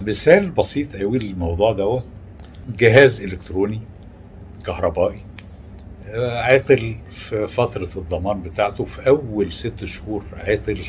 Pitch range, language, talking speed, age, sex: 95-130 Hz, Arabic, 105 wpm, 60-79, male